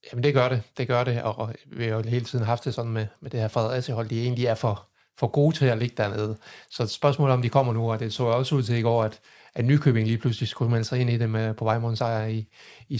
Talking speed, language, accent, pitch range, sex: 290 wpm, Danish, native, 115-125 Hz, male